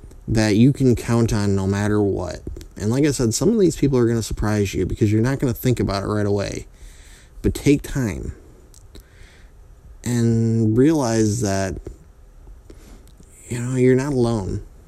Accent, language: American, English